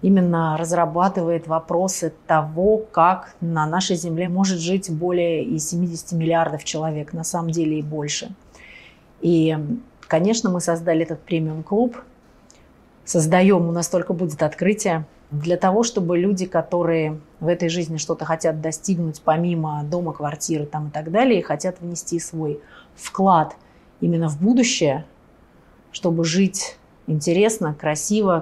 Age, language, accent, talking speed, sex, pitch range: 30-49, Russian, native, 125 wpm, female, 160-190 Hz